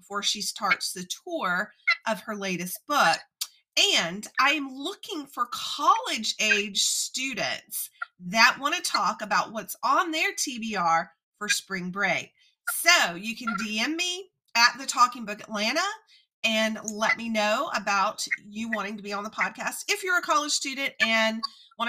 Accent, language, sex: American, English, female